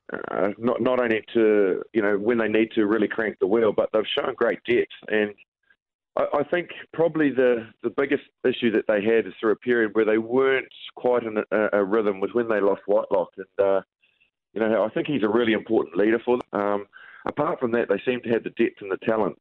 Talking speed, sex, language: 235 wpm, male, English